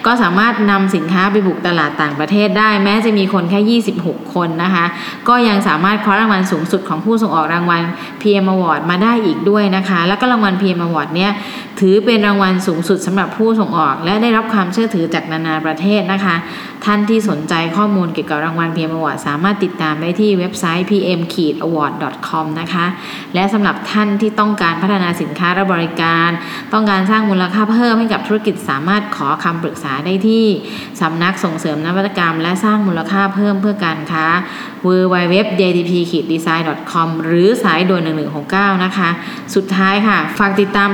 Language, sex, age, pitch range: Thai, female, 20-39, 170-210 Hz